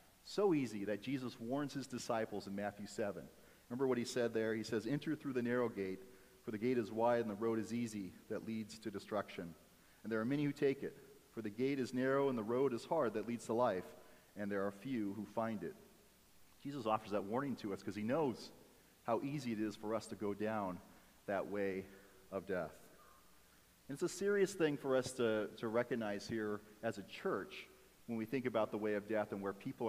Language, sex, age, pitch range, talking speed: English, male, 40-59, 110-130 Hz, 225 wpm